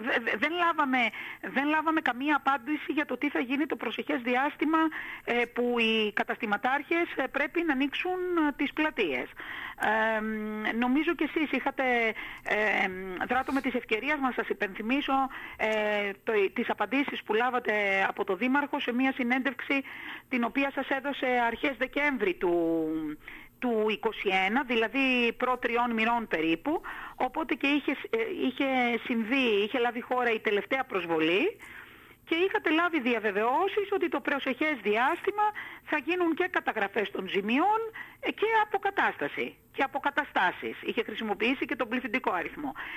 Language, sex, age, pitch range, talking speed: Greek, female, 40-59, 215-300 Hz, 135 wpm